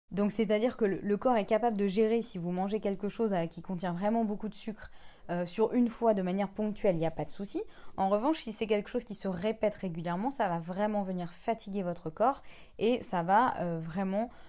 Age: 20-39